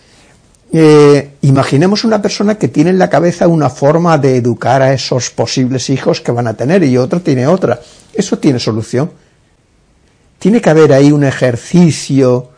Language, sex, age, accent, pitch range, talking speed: Spanish, male, 60-79, Spanish, 120-155 Hz, 160 wpm